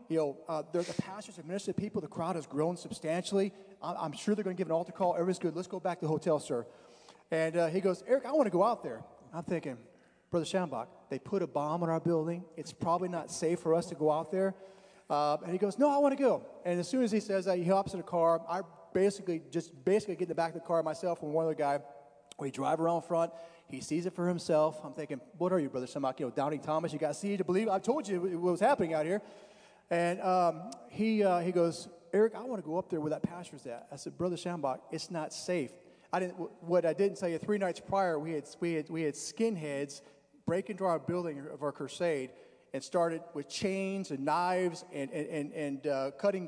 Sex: male